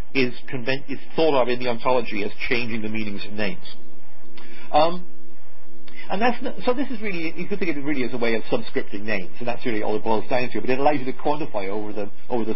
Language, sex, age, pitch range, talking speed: English, male, 50-69, 115-170 Hz, 235 wpm